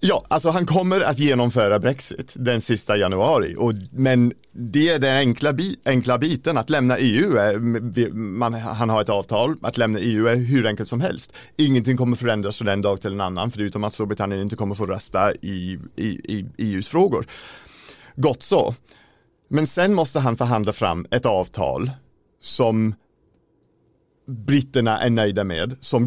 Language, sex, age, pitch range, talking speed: Swedish, male, 40-59, 105-130 Hz, 170 wpm